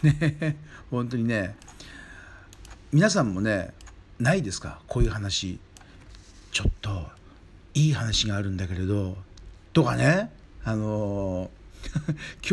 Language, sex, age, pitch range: Japanese, male, 50-69, 95-135 Hz